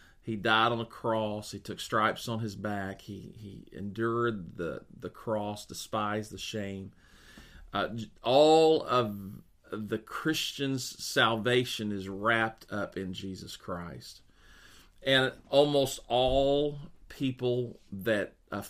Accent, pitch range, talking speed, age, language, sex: American, 100-125 Hz, 120 wpm, 40-59, English, male